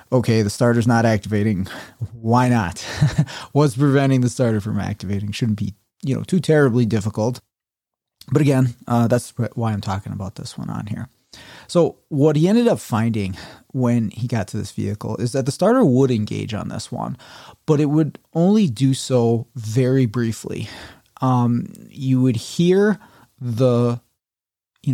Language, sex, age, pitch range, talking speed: English, male, 30-49, 110-140 Hz, 160 wpm